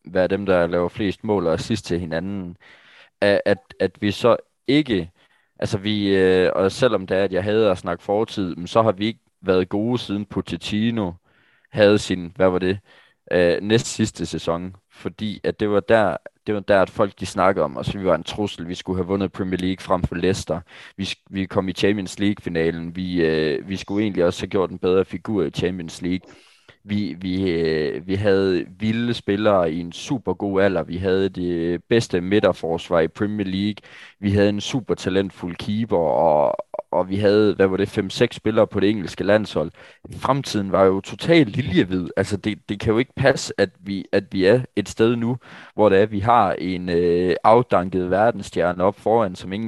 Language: Danish